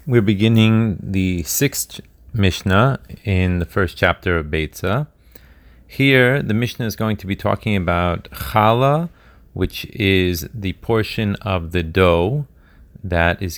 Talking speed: 135 wpm